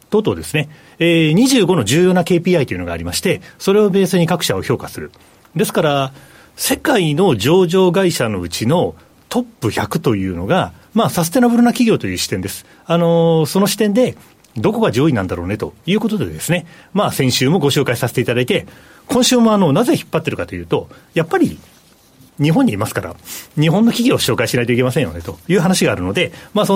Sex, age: male, 40-59